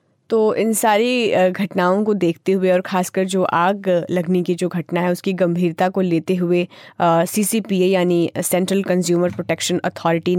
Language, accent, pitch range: Hindi, native, 175-190 Hz